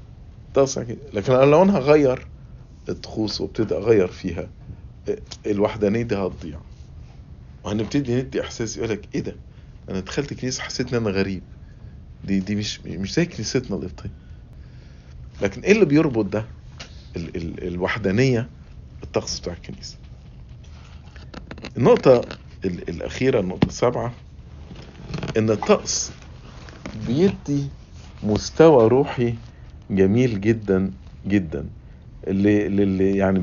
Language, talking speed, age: English, 100 wpm, 50-69